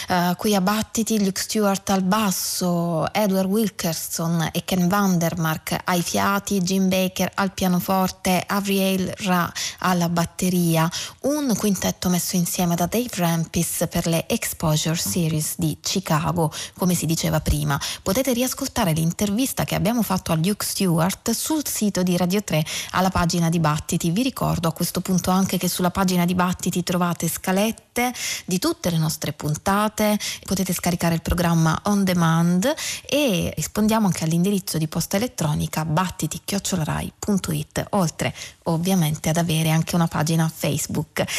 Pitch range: 170-205 Hz